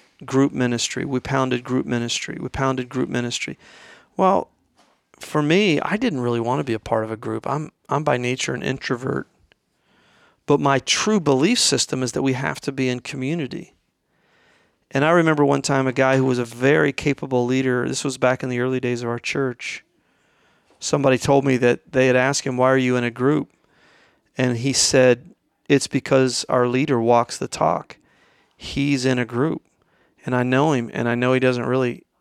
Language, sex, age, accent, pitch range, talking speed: English, male, 40-59, American, 125-140 Hz, 195 wpm